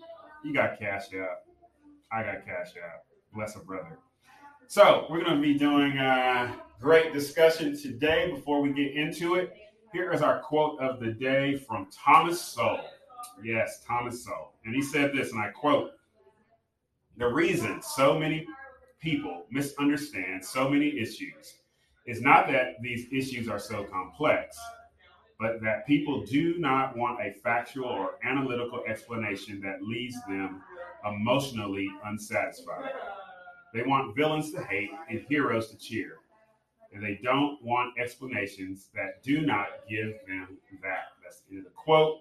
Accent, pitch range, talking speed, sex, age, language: American, 110-160 Hz, 145 wpm, male, 30-49, English